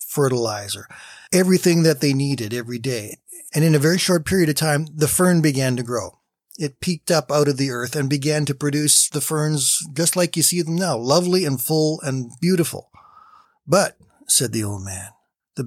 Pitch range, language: 125-155 Hz, English